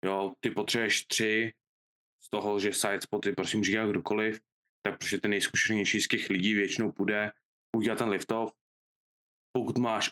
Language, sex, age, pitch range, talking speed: Czech, male, 20-39, 100-110 Hz, 155 wpm